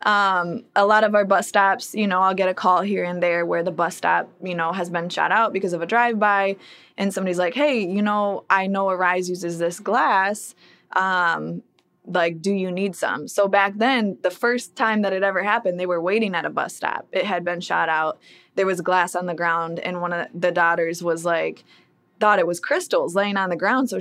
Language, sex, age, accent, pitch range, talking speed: English, female, 20-39, American, 180-210 Hz, 230 wpm